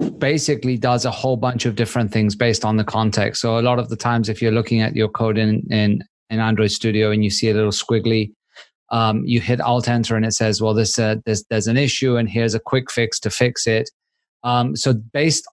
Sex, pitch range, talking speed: male, 110-130 Hz, 240 wpm